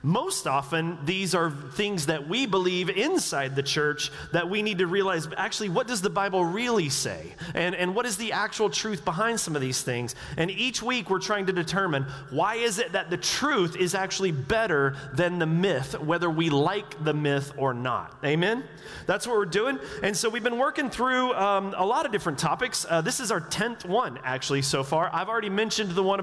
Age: 30-49